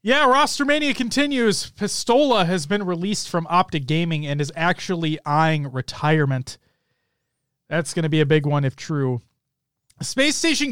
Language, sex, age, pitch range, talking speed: English, male, 30-49, 180-270 Hz, 150 wpm